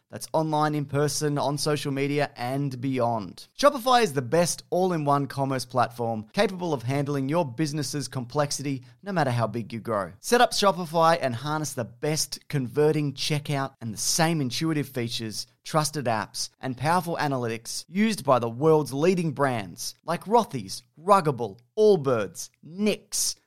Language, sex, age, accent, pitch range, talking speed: English, male, 30-49, Australian, 130-175 Hz, 150 wpm